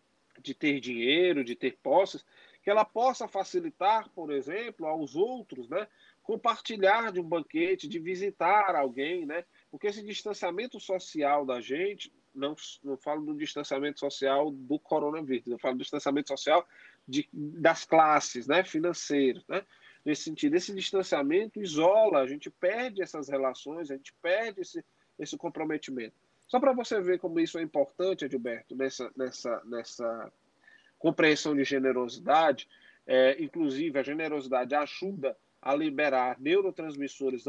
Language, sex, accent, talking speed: Portuguese, male, Brazilian, 135 wpm